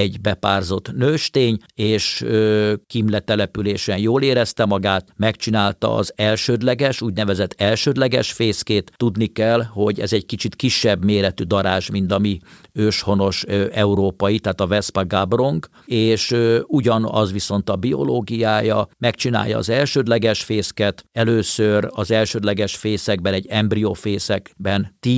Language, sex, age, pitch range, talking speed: Hungarian, male, 50-69, 100-115 Hz, 115 wpm